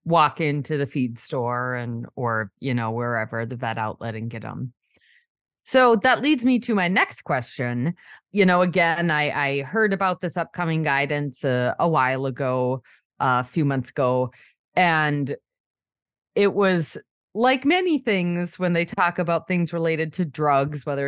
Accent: American